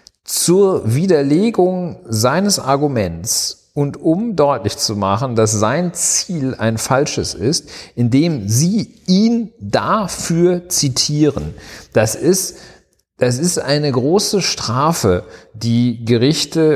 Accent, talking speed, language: German, 105 wpm, German